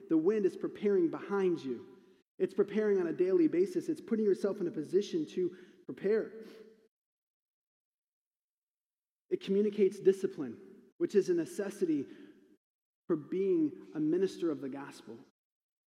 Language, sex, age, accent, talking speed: English, male, 30-49, American, 130 wpm